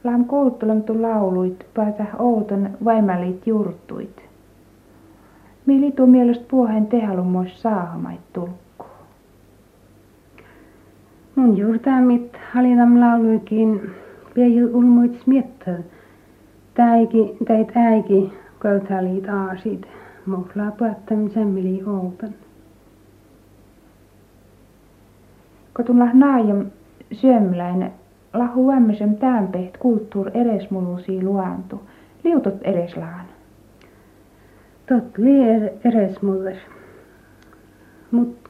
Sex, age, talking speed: female, 60-79, 75 wpm